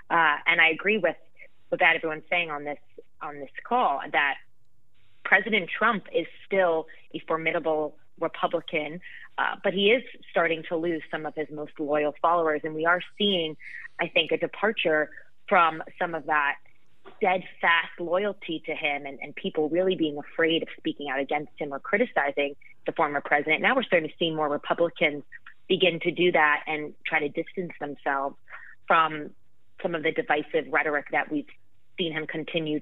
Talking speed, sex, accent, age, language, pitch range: 170 wpm, female, American, 20-39, English, 155-180 Hz